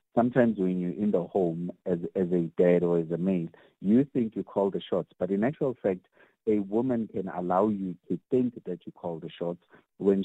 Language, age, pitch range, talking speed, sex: English, 50-69, 90-110 Hz, 215 wpm, male